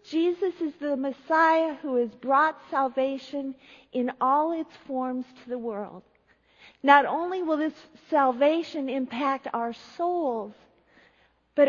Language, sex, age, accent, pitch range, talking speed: English, female, 50-69, American, 225-290 Hz, 125 wpm